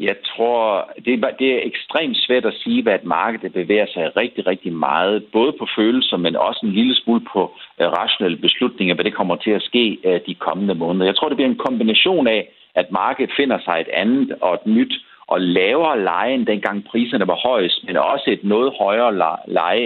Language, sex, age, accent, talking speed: Danish, male, 60-79, native, 195 wpm